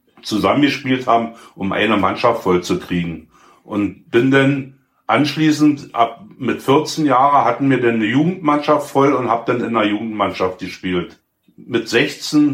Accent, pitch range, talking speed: German, 115-145 Hz, 150 wpm